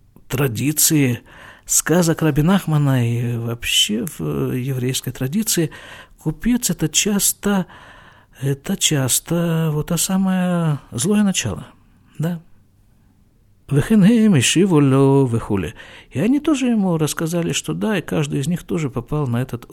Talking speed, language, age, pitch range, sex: 105 wpm, Russian, 50-69, 120-175 Hz, male